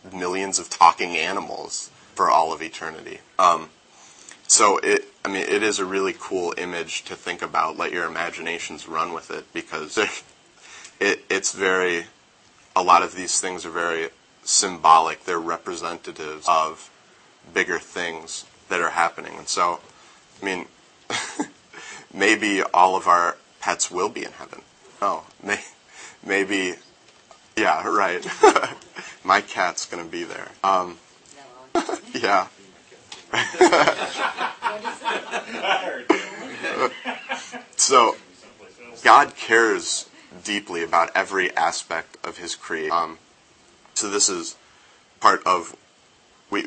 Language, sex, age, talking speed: English, male, 30-49, 110 wpm